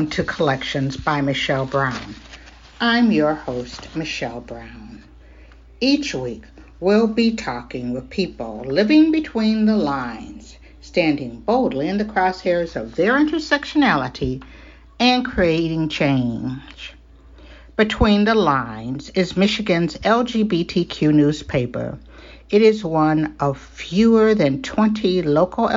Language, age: English, 60-79